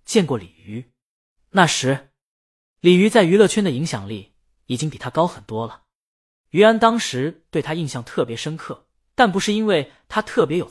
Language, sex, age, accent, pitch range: Chinese, male, 20-39, native, 130-195 Hz